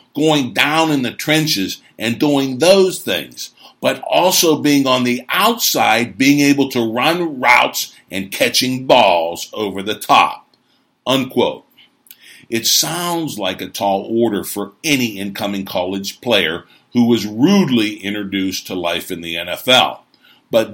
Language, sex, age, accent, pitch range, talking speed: English, male, 60-79, American, 100-140 Hz, 140 wpm